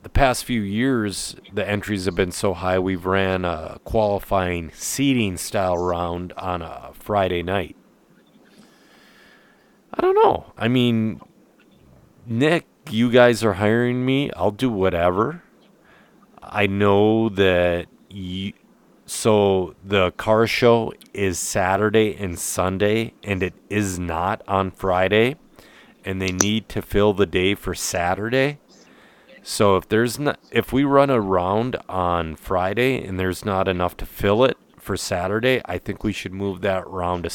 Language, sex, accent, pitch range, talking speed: English, male, American, 90-110 Hz, 140 wpm